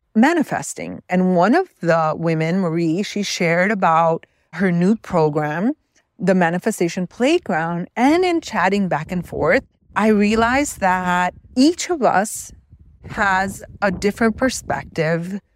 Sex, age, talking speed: female, 40-59, 125 wpm